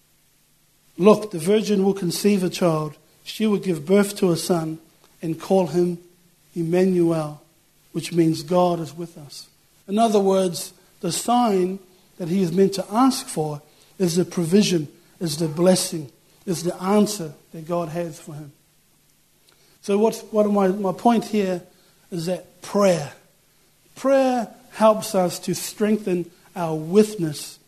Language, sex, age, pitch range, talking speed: English, male, 60-79, 170-200 Hz, 145 wpm